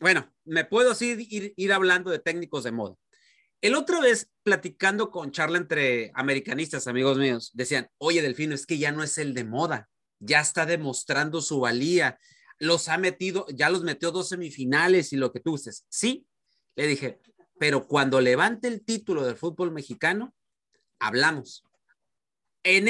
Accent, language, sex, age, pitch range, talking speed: Mexican, Spanish, male, 30-49, 155-240 Hz, 170 wpm